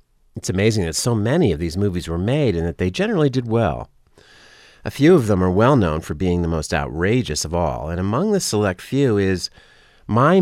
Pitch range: 80-115 Hz